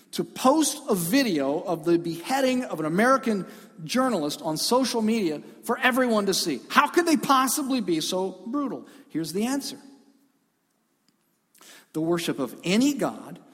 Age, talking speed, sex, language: 50-69, 145 wpm, male, English